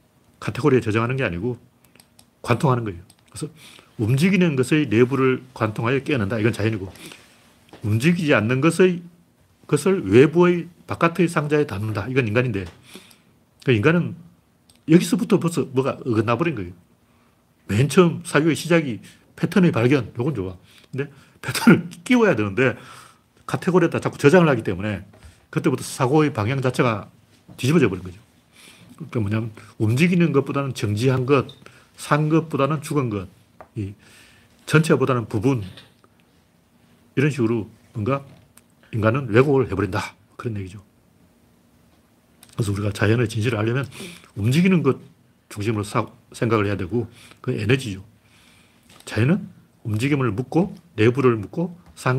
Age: 40-59